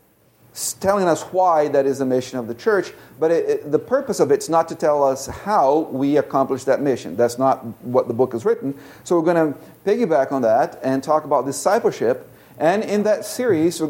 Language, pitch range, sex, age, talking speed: English, 125-155 Hz, male, 40-59, 215 wpm